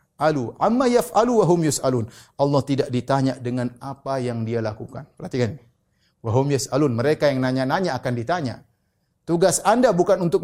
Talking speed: 145 wpm